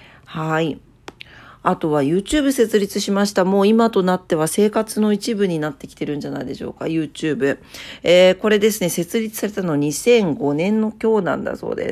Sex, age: female, 40-59